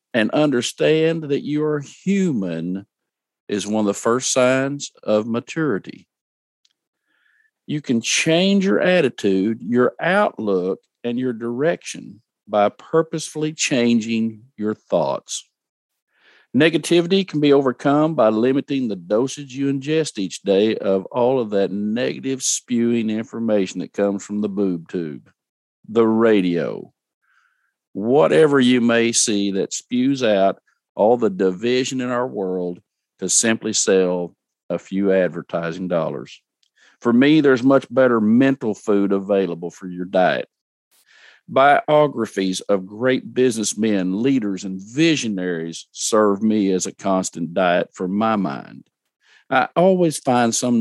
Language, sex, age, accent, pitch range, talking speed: English, male, 50-69, American, 100-140 Hz, 125 wpm